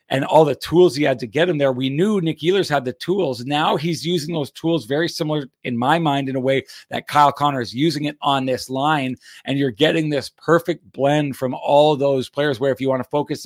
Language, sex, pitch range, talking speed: English, male, 130-155 Hz, 245 wpm